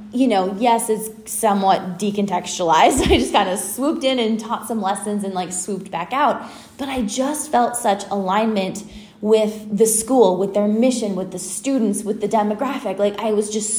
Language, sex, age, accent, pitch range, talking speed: English, female, 10-29, American, 200-235 Hz, 185 wpm